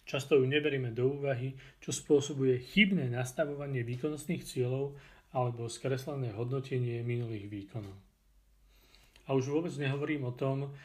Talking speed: 120 wpm